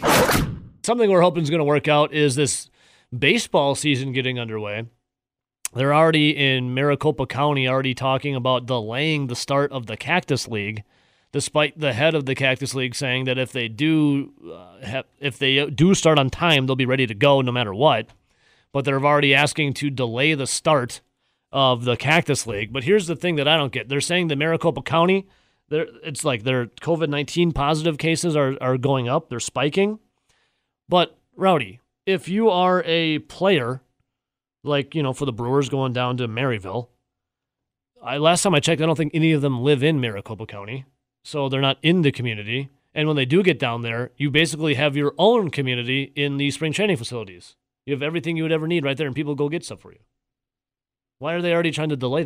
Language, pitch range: English, 125-155 Hz